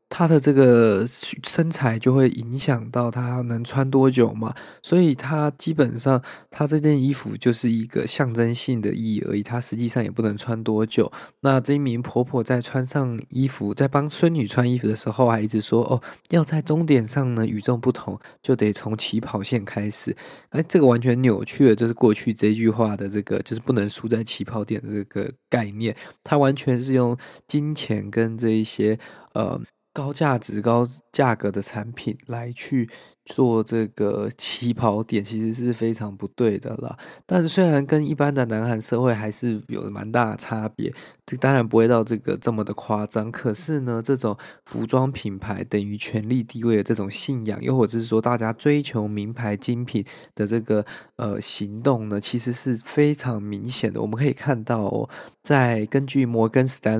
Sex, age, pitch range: male, 20-39, 110-135 Hz